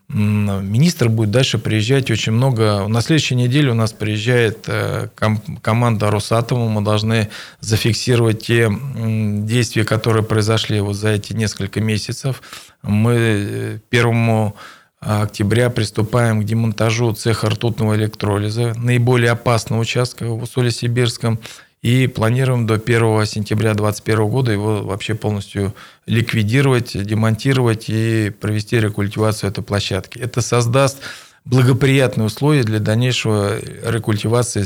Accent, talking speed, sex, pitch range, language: native, 110 wpm, male, 105-120 Hz, Russian